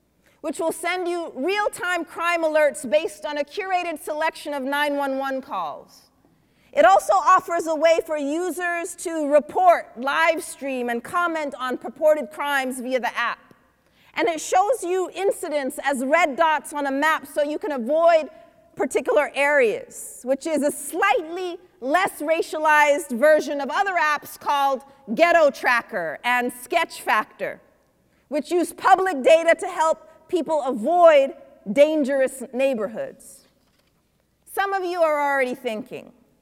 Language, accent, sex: English, American, female